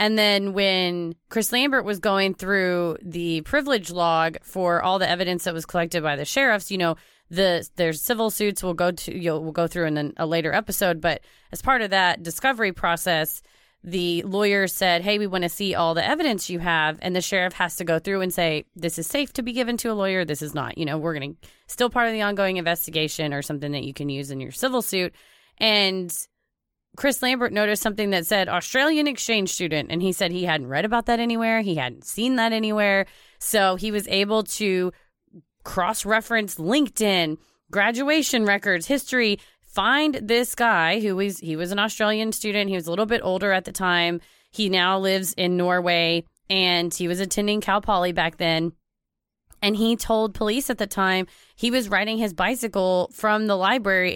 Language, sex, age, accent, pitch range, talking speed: English, female, 30-49, American, 175-215 Hz, 200 wpm